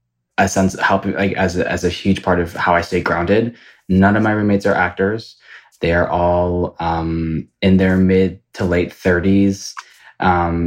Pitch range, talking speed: 85-100 Hz, 175 wpm